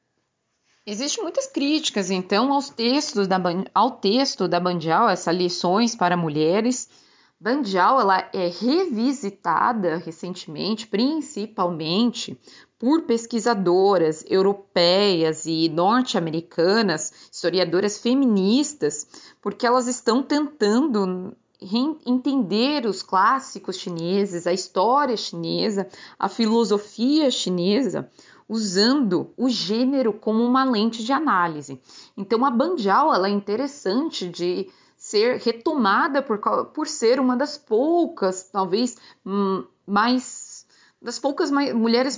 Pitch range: 190-265 Hz